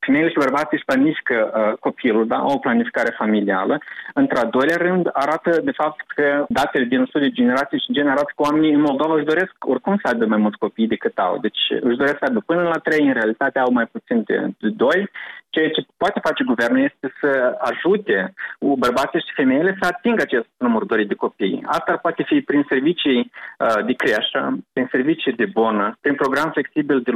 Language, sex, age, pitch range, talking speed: Romanian, male, 30-49, 140-190 Hz, 200 wpm